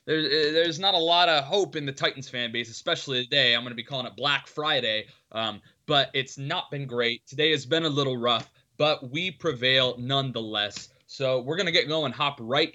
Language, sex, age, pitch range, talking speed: English, male, 20-39, 125-160 Hz, 210 wpm